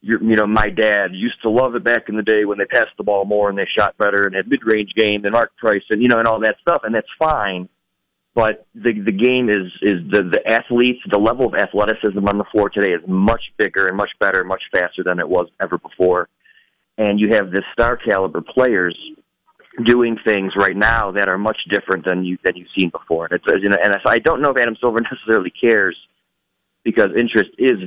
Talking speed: 230 wpm